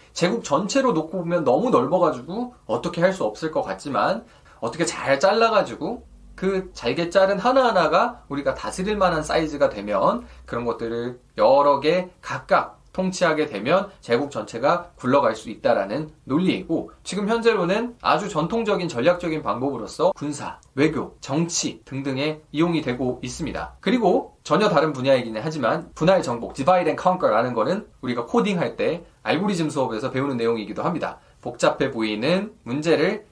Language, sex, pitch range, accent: Korean, male, 135-195 Hz, native